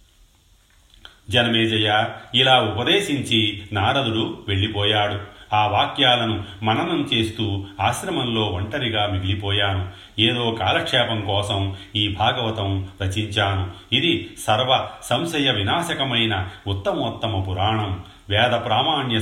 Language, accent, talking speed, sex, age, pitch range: Telugu, native, 80 wpm, male, 40-59, 95-115 Hz